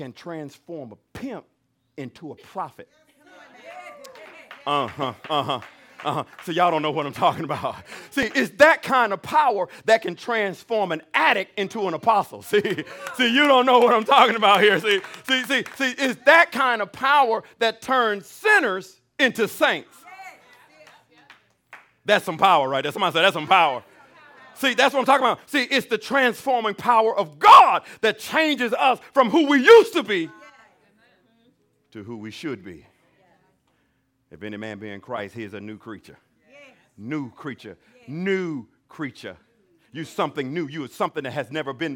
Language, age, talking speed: English, 50-69, 170 wpm